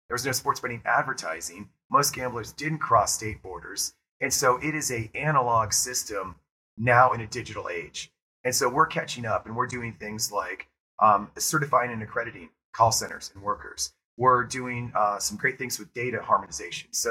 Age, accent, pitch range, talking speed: 30-49, American, 110-130 Hz, 180 wpm